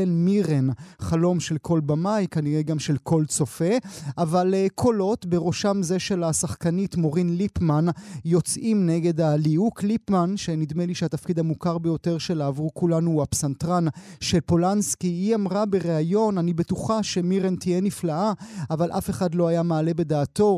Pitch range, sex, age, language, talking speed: 165-195 Hz, male, 30-49, Hebrew, 140 wpm